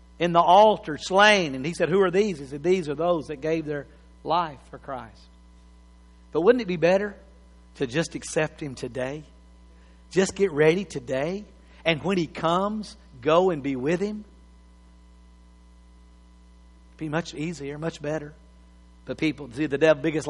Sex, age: male, 50-69